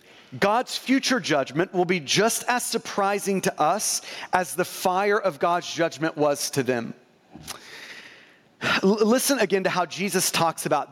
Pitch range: 170-245 Hz